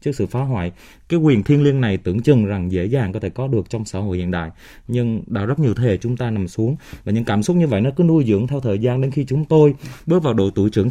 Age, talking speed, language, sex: 20-39, 295 wpm, Vietnamese, male